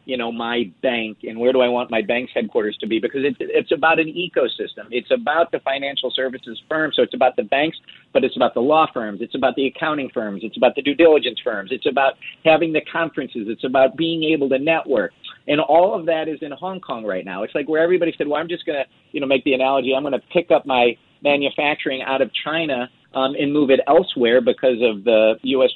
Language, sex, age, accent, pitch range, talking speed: English, male, 40-59, American, 125-165 Hz, 240 wpm